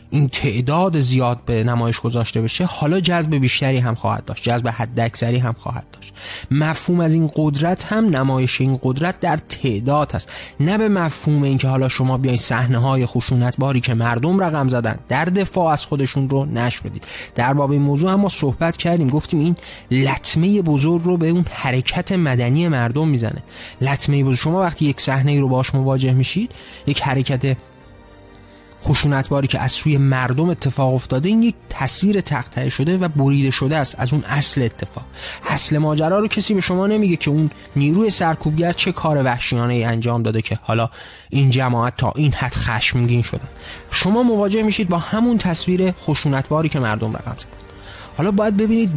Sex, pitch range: male, 120-160 Hz